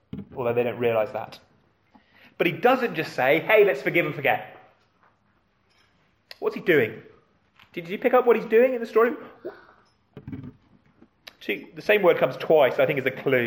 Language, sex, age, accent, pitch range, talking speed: English, male, 30-49, British, 130-190 Hz, 170 wpm